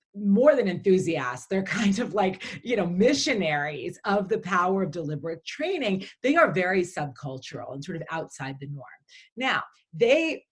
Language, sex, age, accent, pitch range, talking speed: English, female, 30-49, American, 155-220 Hz, 160 wpm